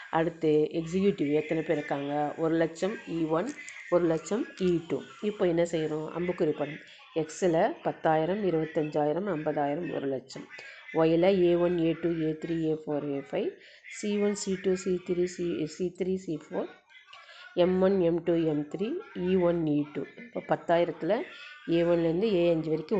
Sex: female